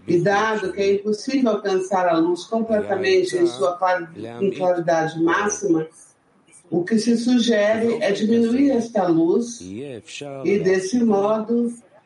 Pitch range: 170-225 Hz